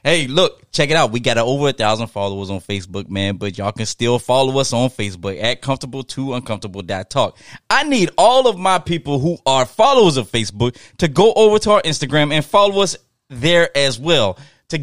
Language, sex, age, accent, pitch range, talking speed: English, male, 20-39, American, 115-180 Hz, 200 wpm